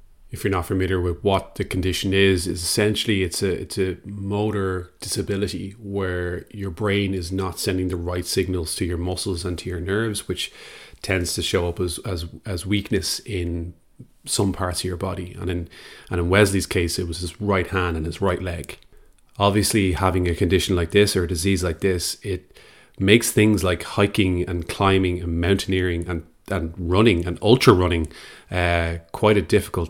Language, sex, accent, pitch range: English, male, Irish, 85-100 Hz